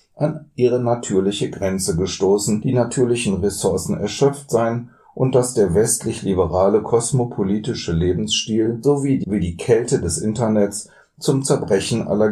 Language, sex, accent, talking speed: German, male, German, 115 wpm